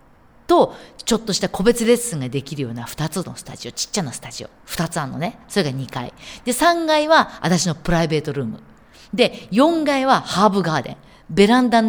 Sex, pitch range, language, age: female, 175-275 Hz, Japanese, 40-59